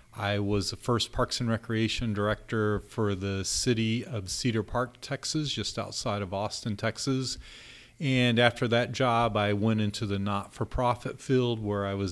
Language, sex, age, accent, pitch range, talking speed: English, male, 40-59, American, 100-120 Hz, 165 wpm